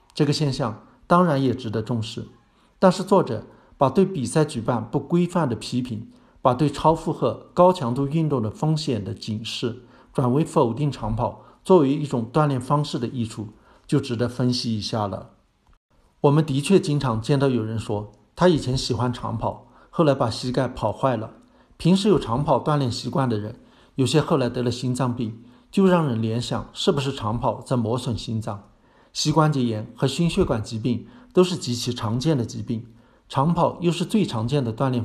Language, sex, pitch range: Chinese, male, 115-150 Hz